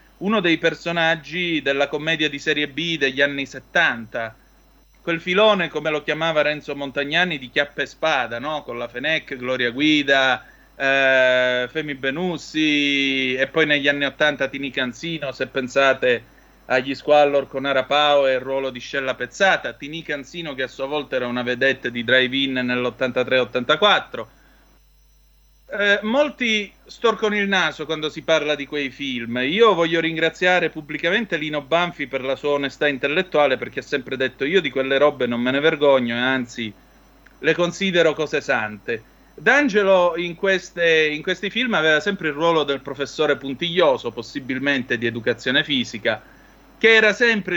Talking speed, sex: 155 wpm, male